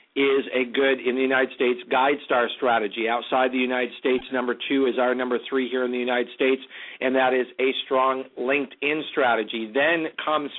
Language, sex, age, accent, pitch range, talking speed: English, male, 50-69, American, 125-140 Hz, 195 wpm